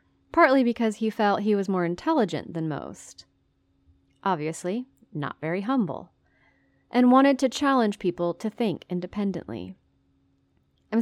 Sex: female